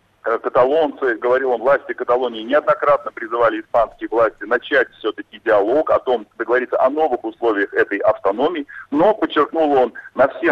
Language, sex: Russian, male